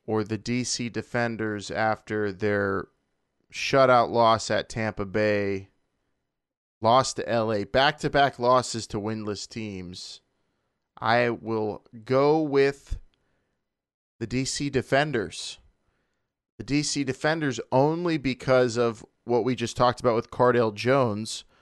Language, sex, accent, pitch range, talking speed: English, male, American, 110-130 Hz, 110 wpm